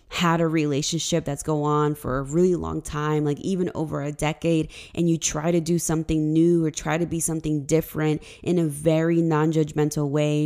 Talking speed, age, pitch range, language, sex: 195 wpm, 20-39, 150-170 Hz, English, female